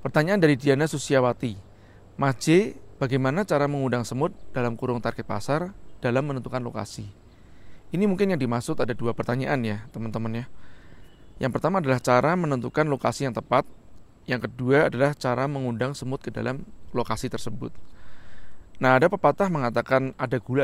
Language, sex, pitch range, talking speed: Indonesian, male, 115-145 Hz, 145 wpm